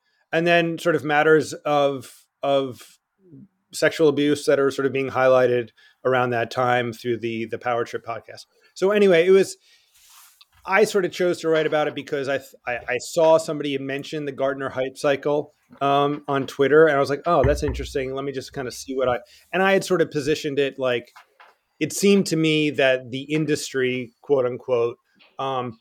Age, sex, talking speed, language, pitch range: 30-49, male, 195 wpm, English, 130-155 Hz